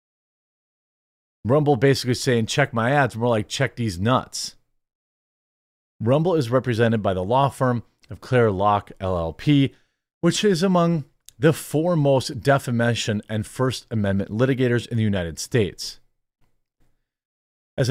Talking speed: 125 wpm